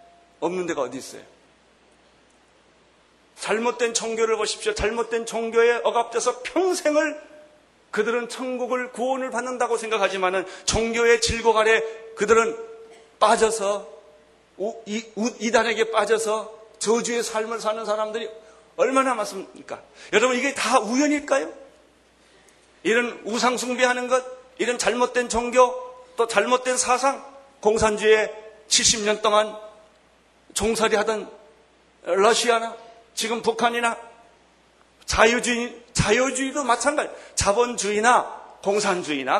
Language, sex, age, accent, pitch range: Korean, male, 40-59, native, 220-260 Hz